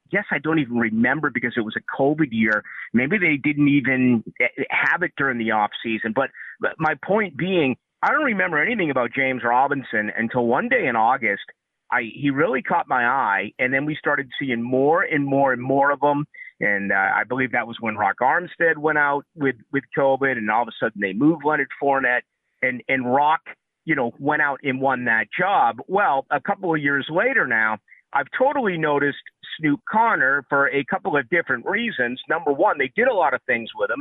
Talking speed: 210 wpm